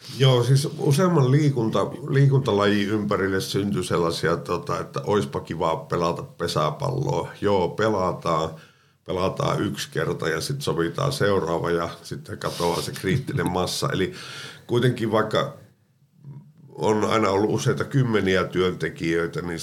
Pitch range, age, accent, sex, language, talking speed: 90-135 Hz, 50-69, native, male, Finnish, 115 wpm